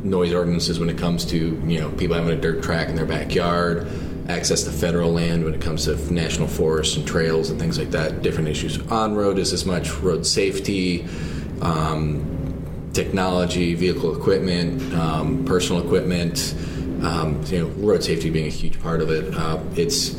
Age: 20-39